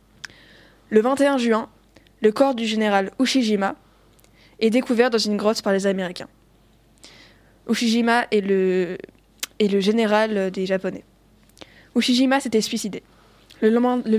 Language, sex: French, female